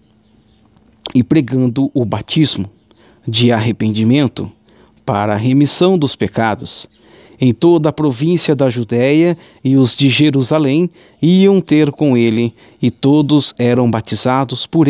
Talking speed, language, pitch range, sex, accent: 120 wpm, Portuguese, 120-155 Hz, male, Brazilian